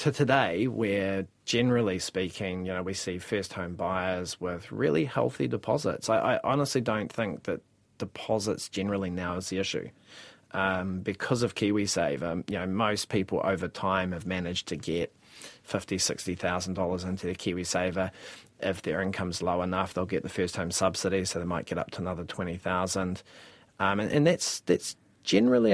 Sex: male